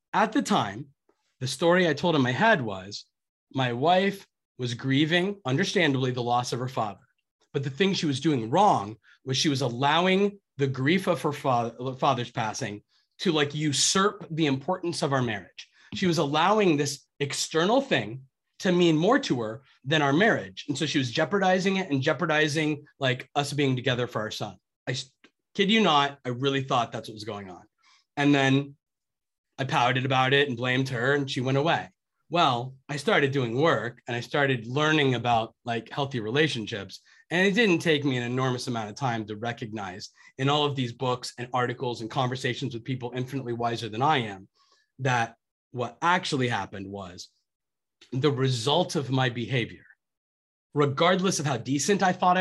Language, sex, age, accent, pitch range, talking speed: English, male, 30-49, American, 125-165 Hz, 180 wpm